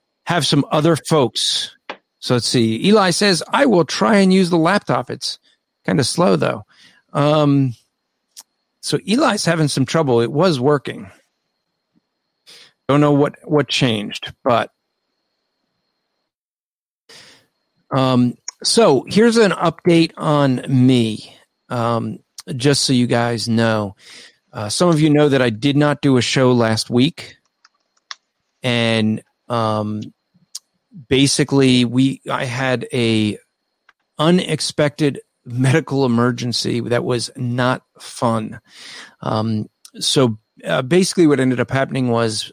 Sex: male